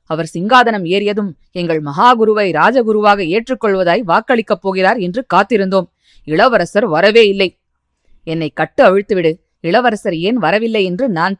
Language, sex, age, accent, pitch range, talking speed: Tamil, female, 20-39, native, 170-215 Hz, 115 wpm